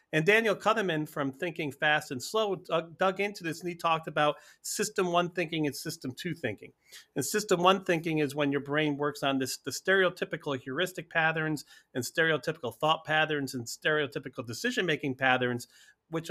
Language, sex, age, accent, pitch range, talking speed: English, male, 40-59, American, 135-175 Hz, 175 wpm